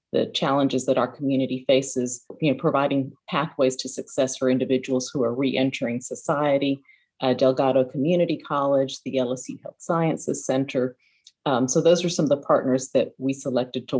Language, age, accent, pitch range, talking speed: English, 40-59, American, 130-140 Hz, 165 wpm